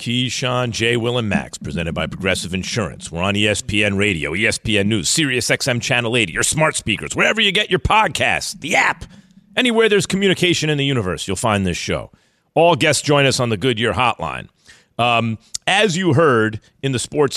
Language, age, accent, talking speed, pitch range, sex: English, 40-59, American, 185 wpm, 125-165 Hz, male